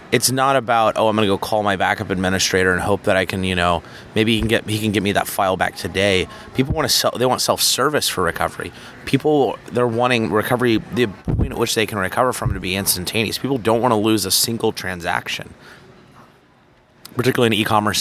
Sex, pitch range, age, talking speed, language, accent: male, 95-115 Hz, 30-49, 220 wpm, English, American